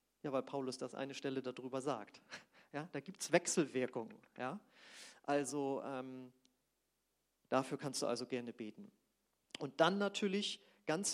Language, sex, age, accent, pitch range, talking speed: German, male, 40-59, German, 135-195 Hz, 140 wpm